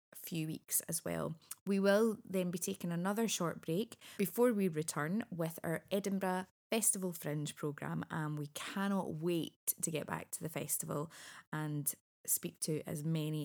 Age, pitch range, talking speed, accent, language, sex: 20-39, 155-195 Hz, 160 wpm, British, English, female